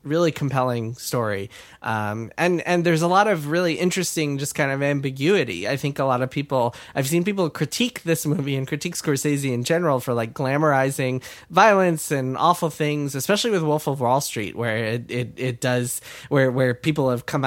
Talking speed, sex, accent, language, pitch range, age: 190 wpm, male, American, English, 115-150 Hz, 20-39